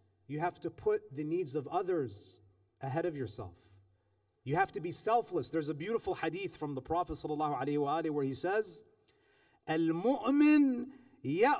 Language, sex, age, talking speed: English, male, 30-49, 145 wpm